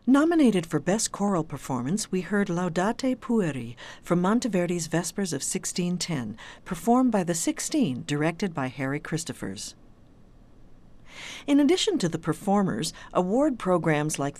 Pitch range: 155-210 Hz